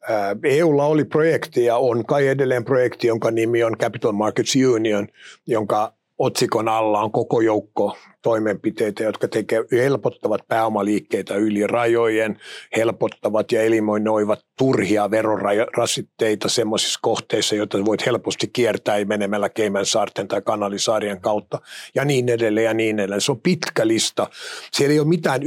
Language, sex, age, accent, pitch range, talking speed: Finnish, male, 50-69, native, 110-130 Hz, 135 wpm